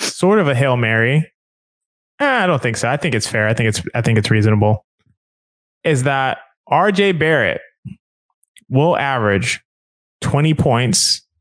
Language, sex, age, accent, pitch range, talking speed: English, male, 20-39, American, 120-160 Hz, 160 wpm